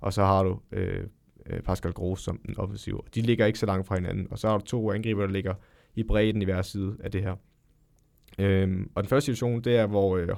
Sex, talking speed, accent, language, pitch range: male, 245 wpm, native, Danish, 100-125 Hz